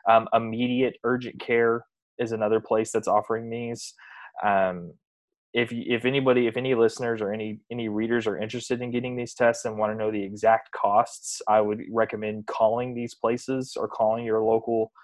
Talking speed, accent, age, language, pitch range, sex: 175 wpm, American, 20-39, English, 105-120 Hz, male